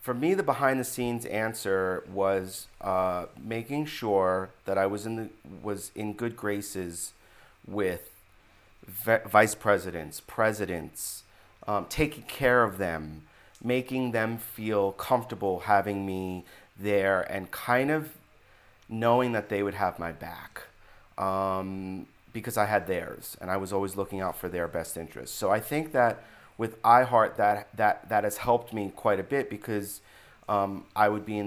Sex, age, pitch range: male, 30-49, 95-120 Hz